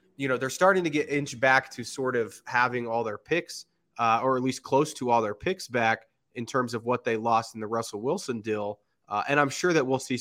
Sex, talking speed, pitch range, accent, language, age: male, 255 wpm, 110-130 Hz, American, English, 20-39